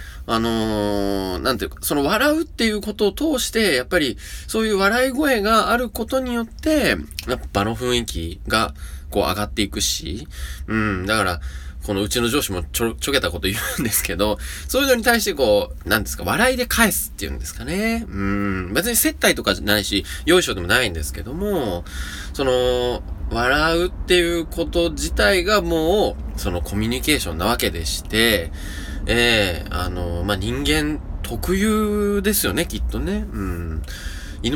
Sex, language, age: male, Japanese, 20-39